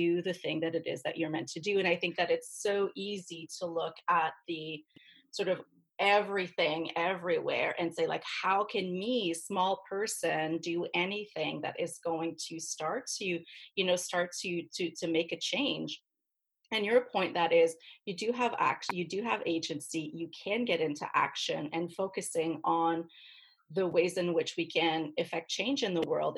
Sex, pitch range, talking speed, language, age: female, 165-195 Hz, 190 wpm, English, 30-49